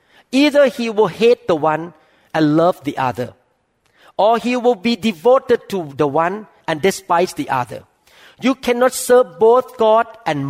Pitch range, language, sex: 155-215 Hz, Thai, male